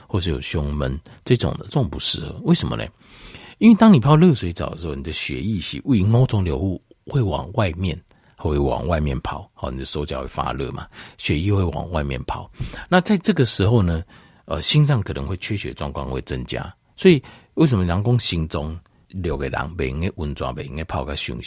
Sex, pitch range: male, 80-120 Hz